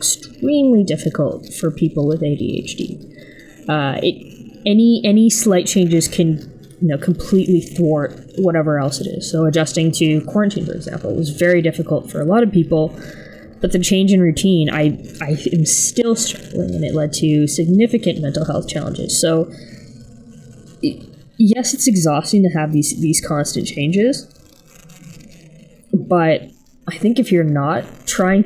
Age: 20-39